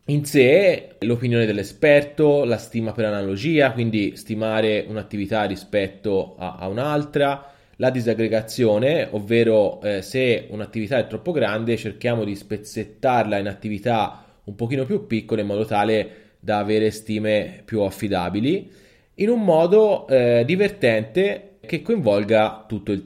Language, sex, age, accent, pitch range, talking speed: Italian, male, 20-39, native, 105-125 Hz, 130 wpm